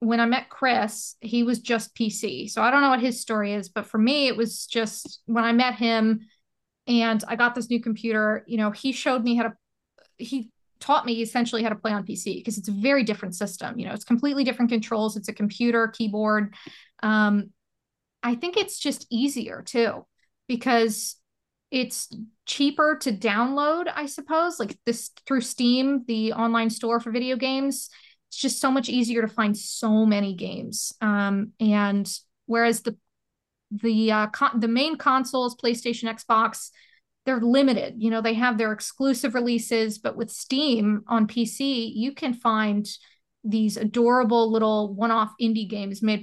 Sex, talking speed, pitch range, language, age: female, 175 wpm, 215-245 Hz, English, 20-39